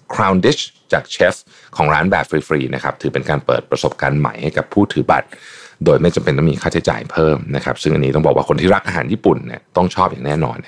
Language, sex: Thai, male